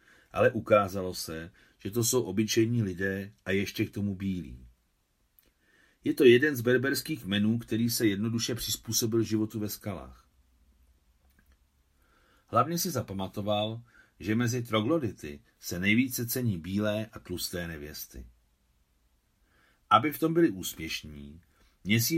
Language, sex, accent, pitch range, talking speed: Czech, male, native, 85-120 Hz, 120 wpm